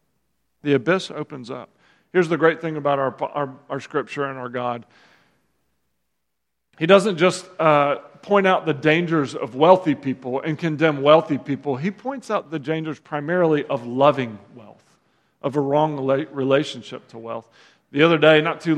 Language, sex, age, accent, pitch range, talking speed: English, male, 40-59, American, 135-190 Hz, 165 wpm